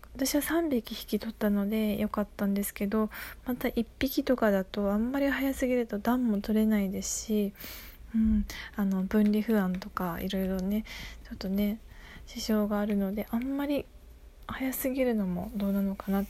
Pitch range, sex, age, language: 200-250 Hz, female, 20-39, Japanese